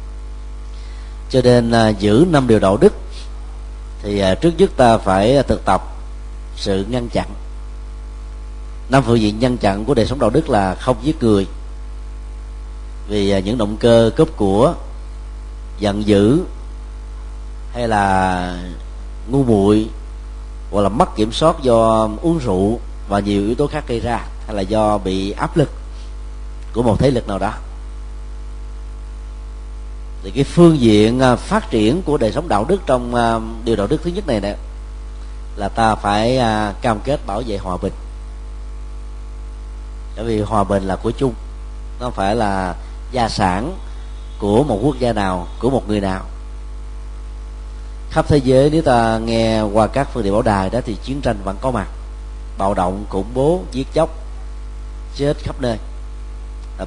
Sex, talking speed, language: male, 155 wpm, Vietnamese